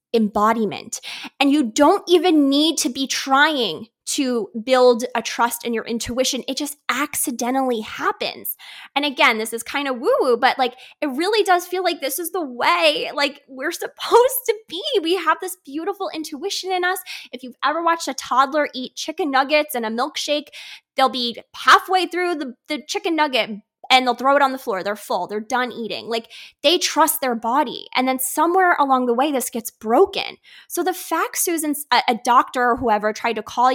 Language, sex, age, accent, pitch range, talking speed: English, female, 20-39, American, 230-315 Hz, 190 wpm